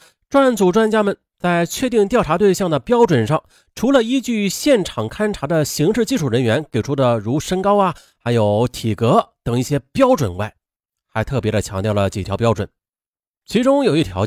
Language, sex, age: Chinese, male, 30-49